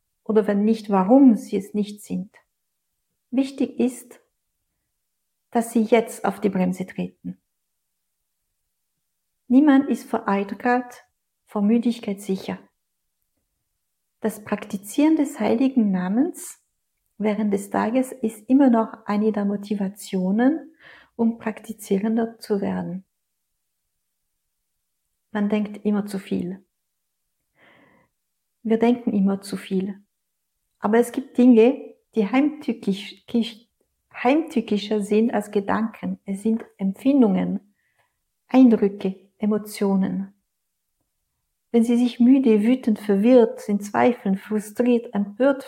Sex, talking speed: female, 100 wpm